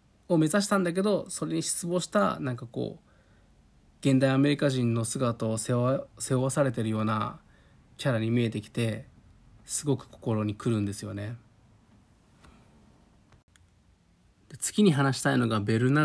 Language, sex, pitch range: Japanese, male, 110-145 Hz